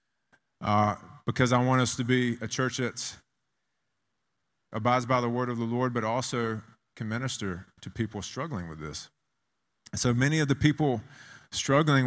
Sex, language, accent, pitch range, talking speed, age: male, Russian, American, 110-130 Hz, 160 wpm, 30-49